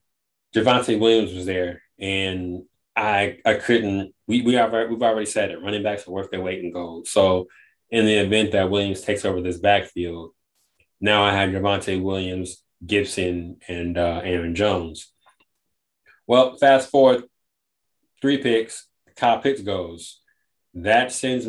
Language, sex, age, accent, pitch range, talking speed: English, male, 20-39, American, 95-115 Hz, 150 wpm